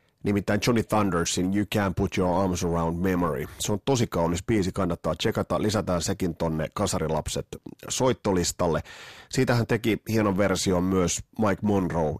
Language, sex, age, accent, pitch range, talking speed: Finnish, male, 30-49, native, 85-105 Hz, 140 wpm